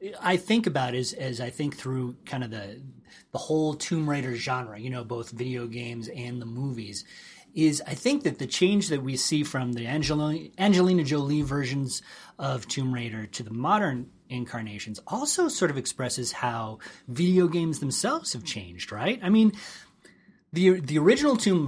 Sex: male